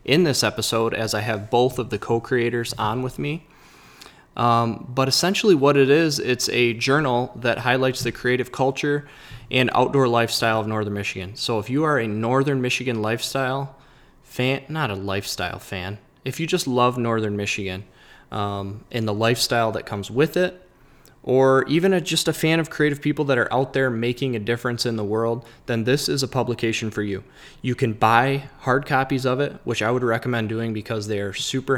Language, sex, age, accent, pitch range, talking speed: English, male, 20-39, American, 110-135 Hz, 190 wpm